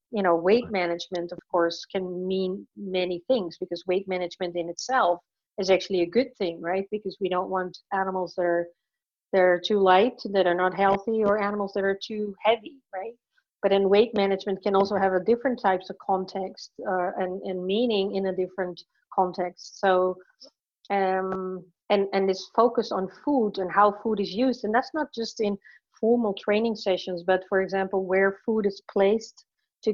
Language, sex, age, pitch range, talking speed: English, female, 40-59, 185-215 Hz, 185 wpm